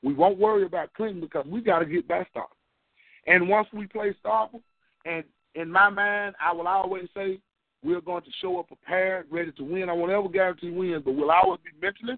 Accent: American